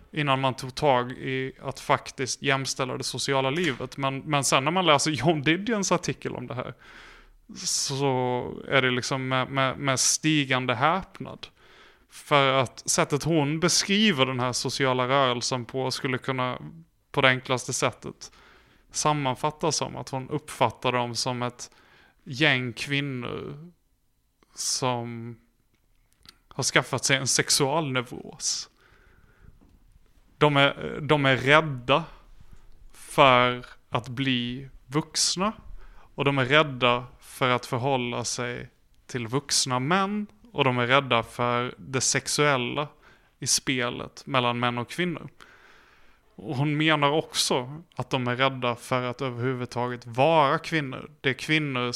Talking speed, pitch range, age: 130 wpm, 125-145 Hz, 30-49